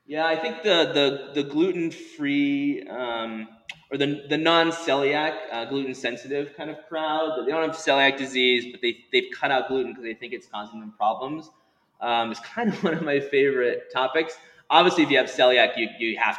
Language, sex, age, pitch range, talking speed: English, male, 20-39, 110-155 Hz, 190 wpm